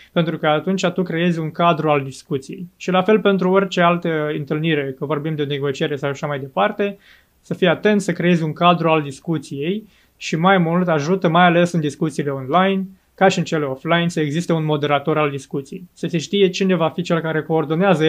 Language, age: Romanian, 20-39